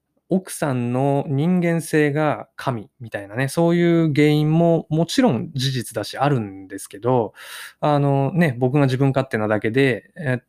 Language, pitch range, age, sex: Japanese, 115-160 Hz, 20-39, male